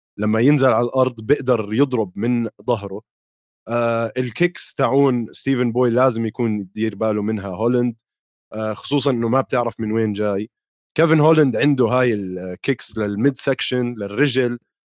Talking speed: 140 wpm